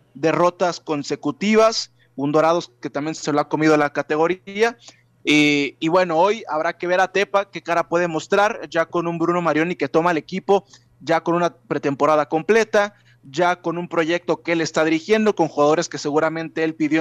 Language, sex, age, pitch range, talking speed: Spanish, male, 20-39, 150-175 Hz, 185 wpm